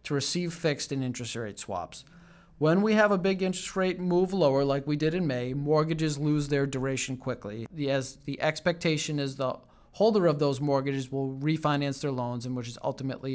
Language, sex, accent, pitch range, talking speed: English, male, American, 130-165 Hz, 195 wpm